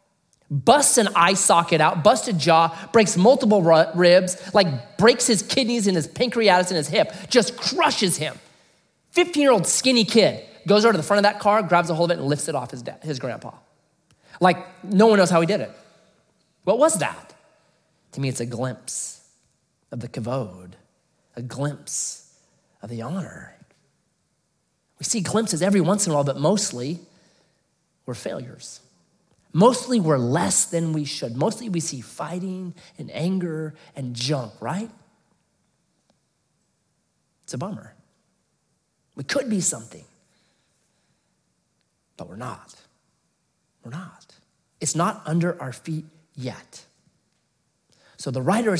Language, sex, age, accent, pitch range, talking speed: English, male, 30-49, American, 150-205 Hz, 150 wpm